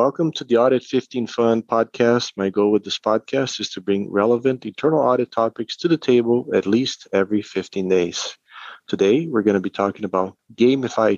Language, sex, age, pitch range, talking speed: English, male, 40-59, 100-130 Hz, 190 wpm